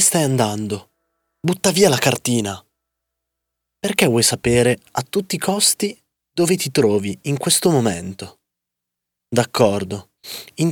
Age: 20-39